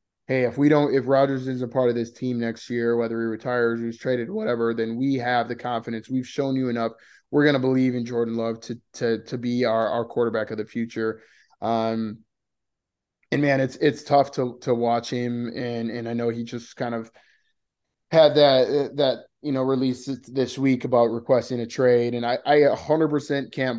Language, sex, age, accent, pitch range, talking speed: English, male, 20-39, American, 115-135 Hz, 205 wpm